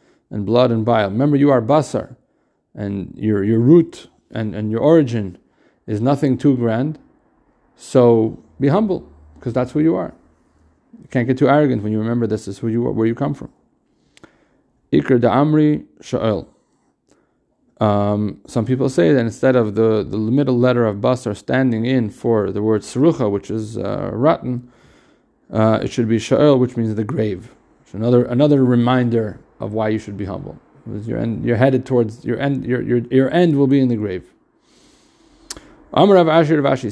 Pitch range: 115-145 Hz